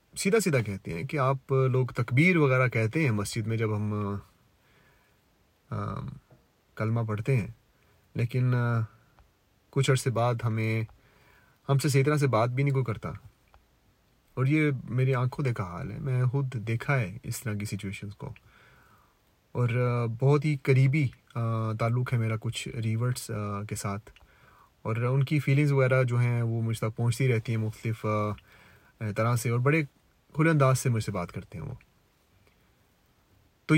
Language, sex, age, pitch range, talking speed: Urdu, male, 30-49, 110-135 Hz, 155 wpm